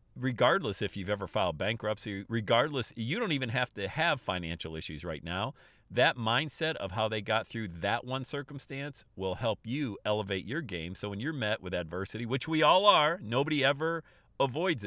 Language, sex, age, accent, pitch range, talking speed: English, male, 40-59, American, 95-140 Hz, 185 wpm